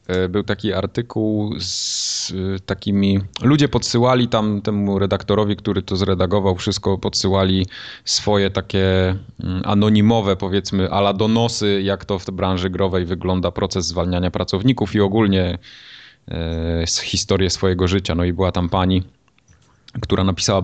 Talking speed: 130 wpm